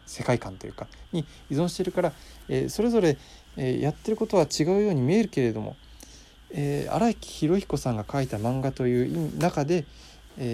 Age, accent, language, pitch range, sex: 20-39, native, Japanese, 110-170 Hz, male